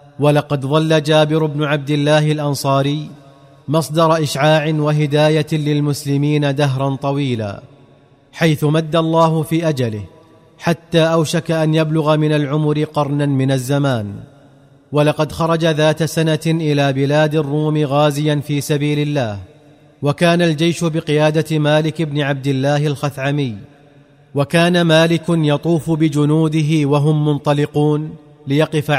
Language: Arabic